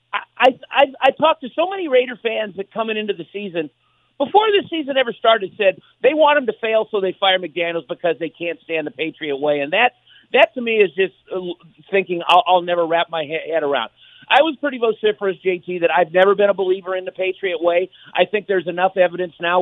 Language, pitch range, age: English, 170-225 Hz, 50-69